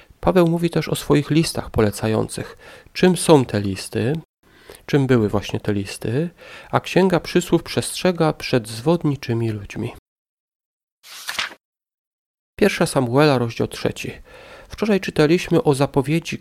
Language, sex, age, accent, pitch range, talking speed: Polish, male, 40-59, native, 115-165 Hz, 115 wpm